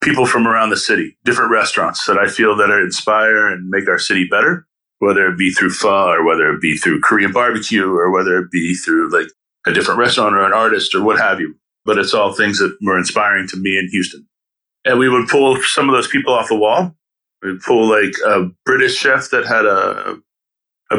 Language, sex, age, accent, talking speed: English, male, 30-49, American, 225 wpm